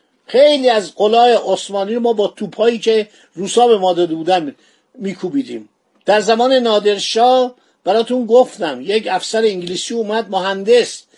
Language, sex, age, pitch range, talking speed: Persian, male, 50-69, 215-260 Hz, 130 wpm